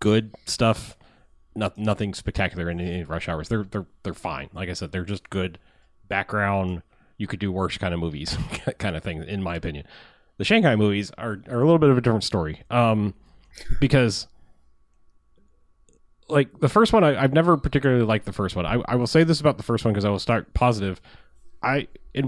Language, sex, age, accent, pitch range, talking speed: English, male, 30-49, American, 100-125 Hz, 195 wpm